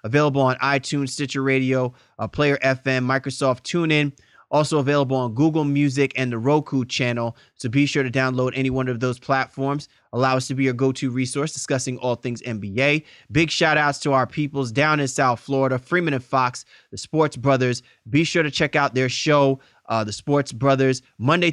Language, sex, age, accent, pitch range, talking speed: English, male, 30-49, American, 125-145 Hz, 185 wpm